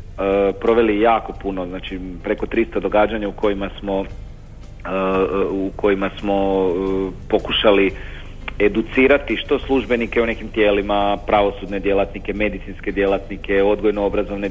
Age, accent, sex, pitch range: 40-59, native, male, 100-115 Hz